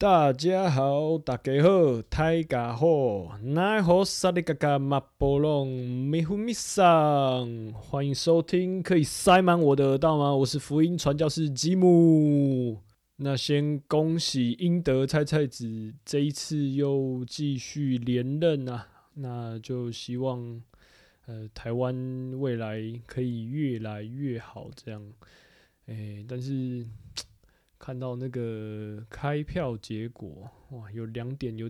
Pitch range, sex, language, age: 115-145 Hz, male, Chinese, 20-39